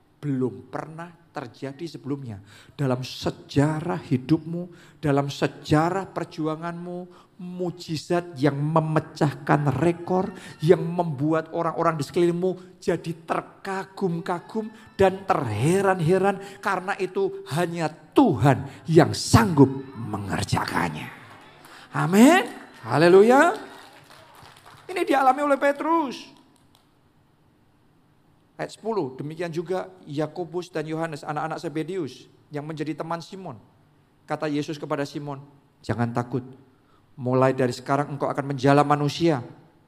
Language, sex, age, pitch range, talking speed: Indonesian, male, 50-69, 145-200 Hz, 95 wpm